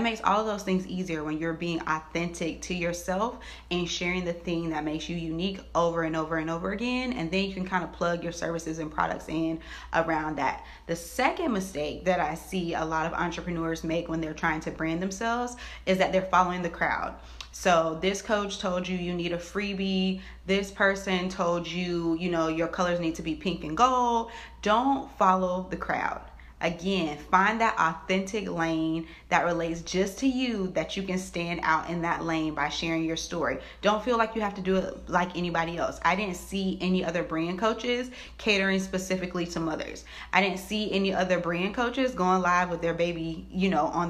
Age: 30-49